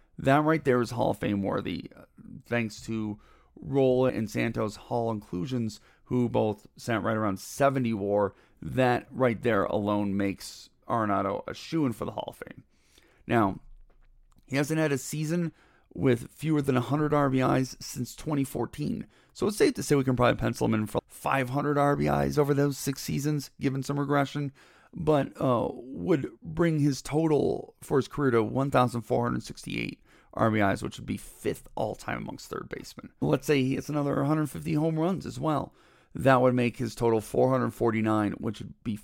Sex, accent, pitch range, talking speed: male, American, 110-145 Hz, 170 wpm